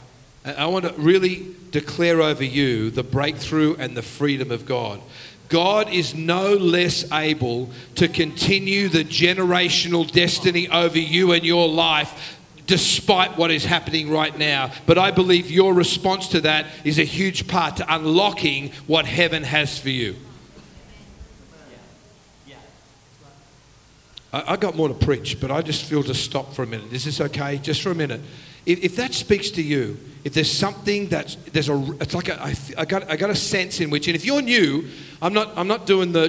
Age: 50-69